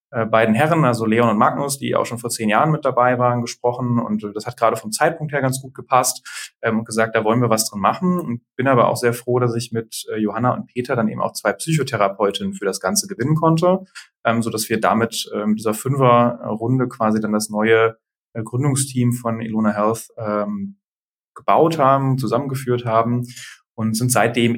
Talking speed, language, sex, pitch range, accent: 200 wpm, German, male, 110-125 Hz, German